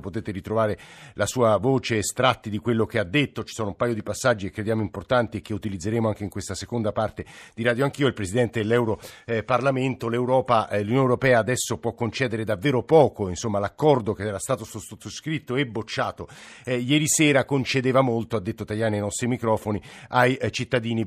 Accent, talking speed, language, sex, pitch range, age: native, 175 wpm, Italian, male, 110-135 Hz, 50-69